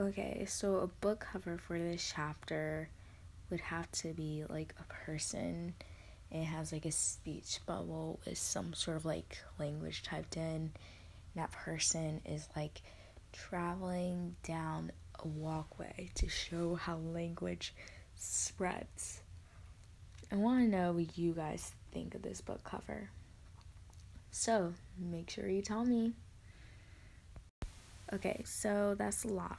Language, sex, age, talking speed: English, female, 20-39, 130 wpm